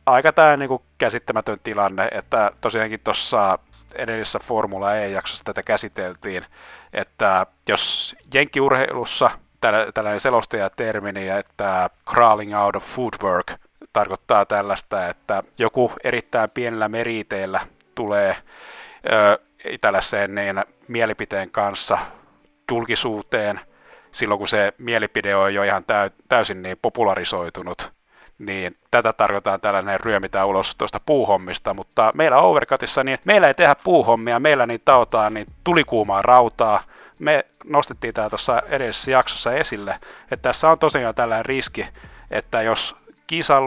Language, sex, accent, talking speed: Finnish, male, native, 120 wpm